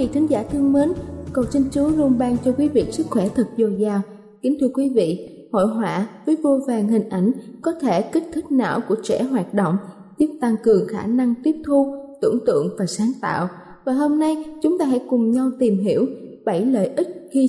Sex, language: female, Vietnamese